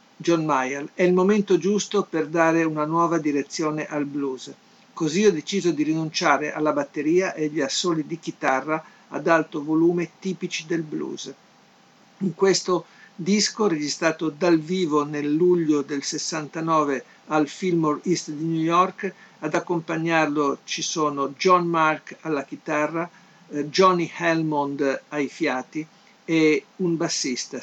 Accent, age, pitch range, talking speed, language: native, 50-69, 150-175 Hz, 135 wpm, Italian